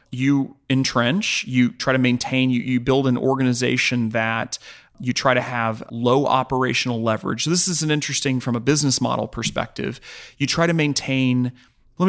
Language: English